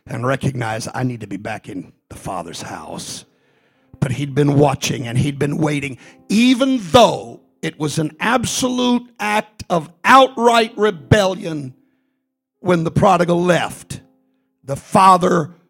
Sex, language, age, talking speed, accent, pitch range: male, English, 50-69, 135 wpm, American, 155-230 Hz